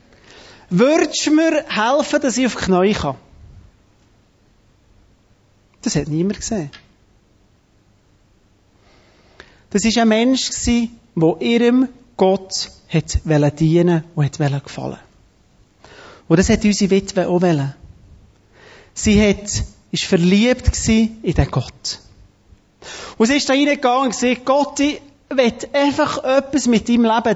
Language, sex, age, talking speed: German, male, 30-49, 120 wpm